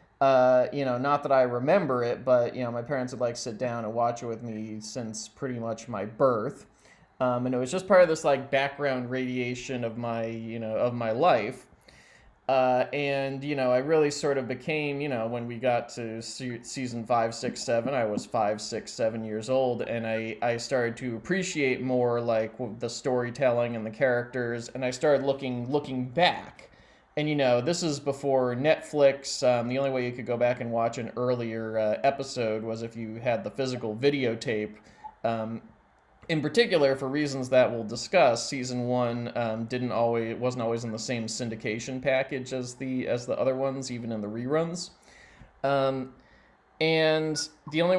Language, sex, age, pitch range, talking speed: English, male, 20-39, 115-140 Hz, 190 wpm